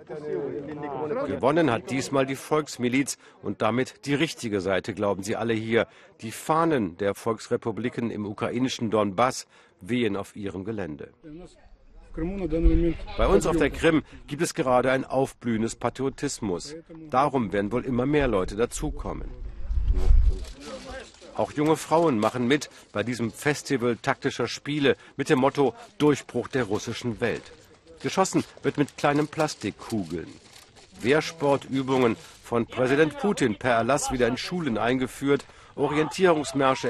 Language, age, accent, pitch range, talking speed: German, 50-69, German, 105-140 Hz, 125 wpm